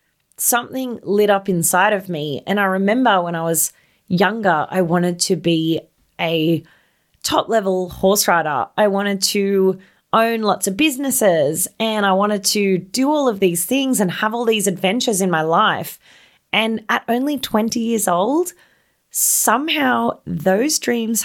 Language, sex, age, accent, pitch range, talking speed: English, female, 20-39, Australian, 180-235 Hz, 155 wpm